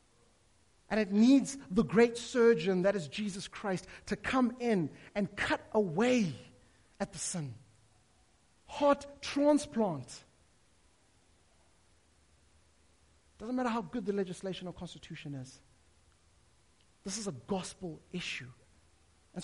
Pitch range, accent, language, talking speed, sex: 155-235 Hz, South African, English, 110 wpm, male